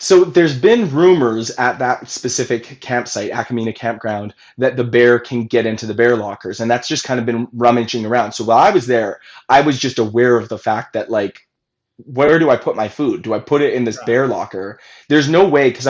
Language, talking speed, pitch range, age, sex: English, 225 wpm, 115-135 Hz, 20-39, male